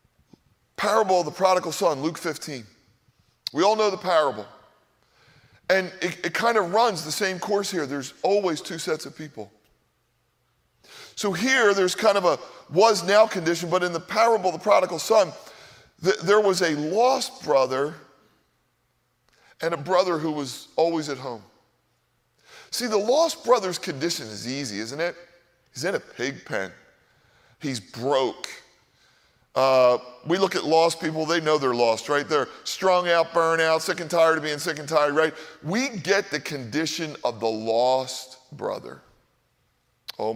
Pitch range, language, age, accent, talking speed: 125-185 Hz, English, 40-59, American, 160 wpm